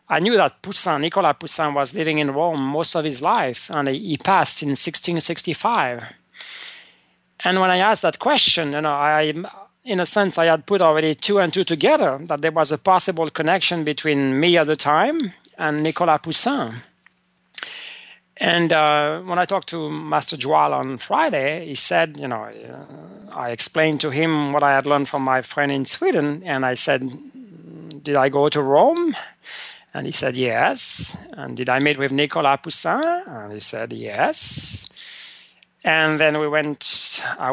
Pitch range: 145-180 Hz